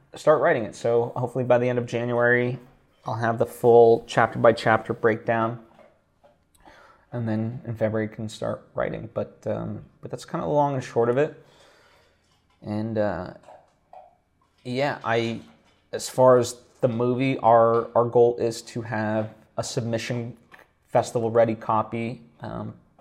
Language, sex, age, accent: English, male, 20-39, American